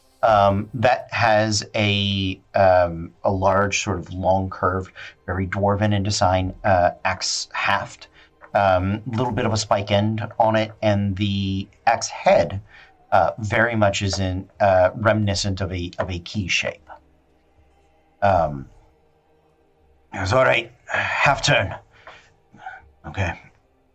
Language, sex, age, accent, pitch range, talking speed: English, male, 40-59, American, 95-110 Hz, 135 wpm